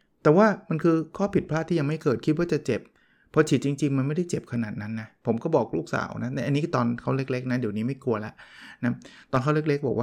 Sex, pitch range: male, 115-150 Hz